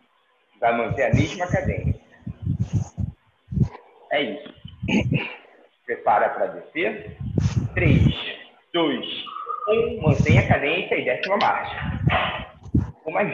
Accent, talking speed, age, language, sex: Brazilian, 95 wpm, 50-69, Portuguese, male